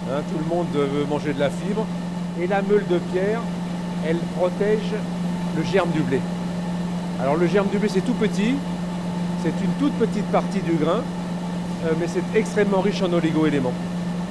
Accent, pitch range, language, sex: French, 170-180 Hz, French, male